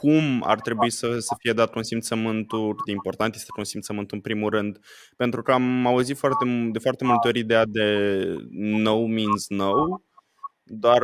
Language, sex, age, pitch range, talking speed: Romanian, male, 20-39, 105-120 Hz, 170 wpm